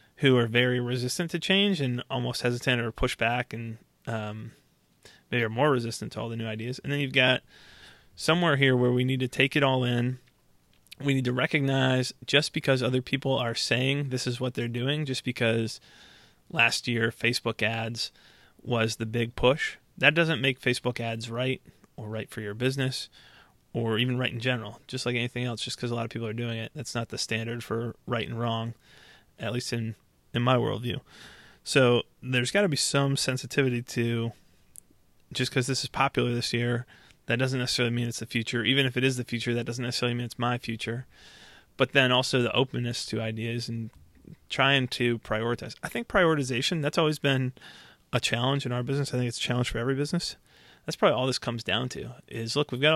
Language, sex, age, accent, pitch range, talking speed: English, male, 20-39, American, 115-130 Hz, 205 wpm